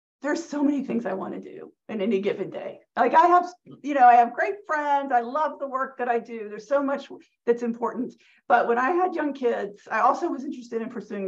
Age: 40-59